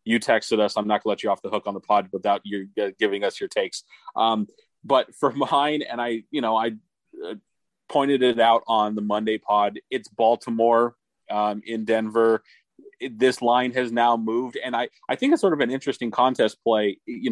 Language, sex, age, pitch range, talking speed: English, male, 30-49, 100-120 Hz, 210 wpm